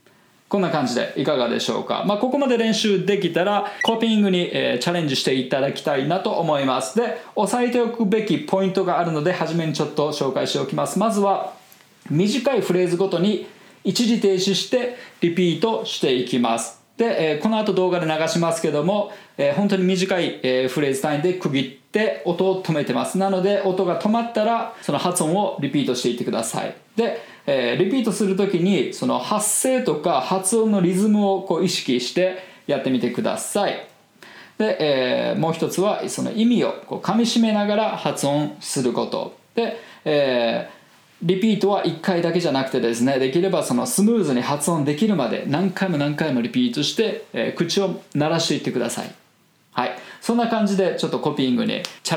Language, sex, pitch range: Japanese, male, 150-210 Hz